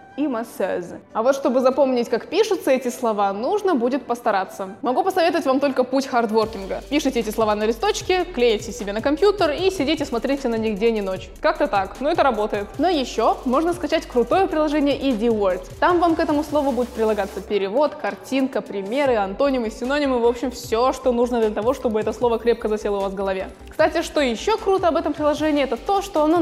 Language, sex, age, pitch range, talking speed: Russian, female, 20-39, 225-300 Hz, 195 wpm